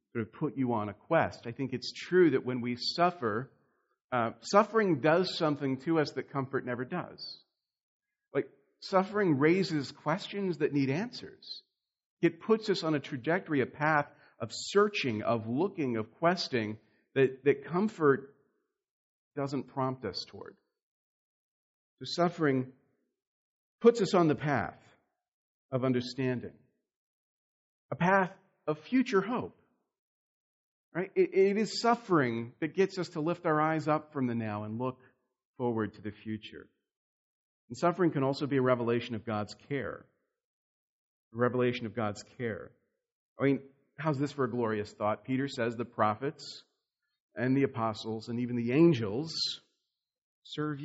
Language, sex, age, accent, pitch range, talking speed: English, male, 50-69, American, 120-165 Hz, 145 wpm